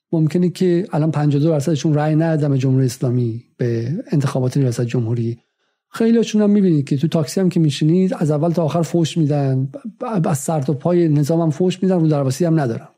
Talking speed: 185 wpm